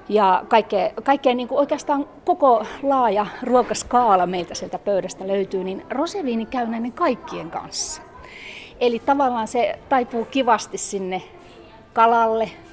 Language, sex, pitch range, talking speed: Finnish, female, 195-260 Hz, 120 wpm